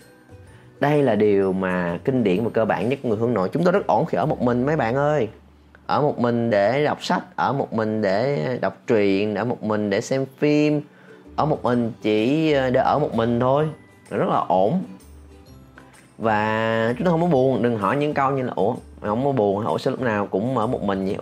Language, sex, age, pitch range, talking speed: Vietnamese, male, 30-49, 105-145 Hz, 225 wpm